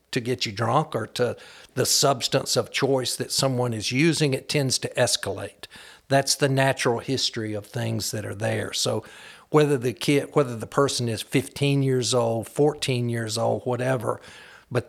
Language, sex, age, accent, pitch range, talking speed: English, male, 60-79, American, 115-140 Hz, 175 wpm